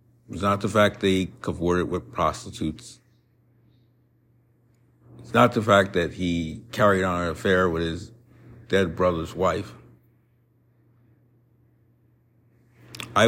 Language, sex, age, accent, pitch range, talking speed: English, male, 50-69, American, 95-120 Hz, 115 wpm